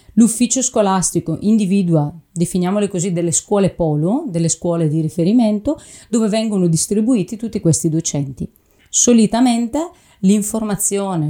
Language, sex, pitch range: Italian, female, 165-220 Hz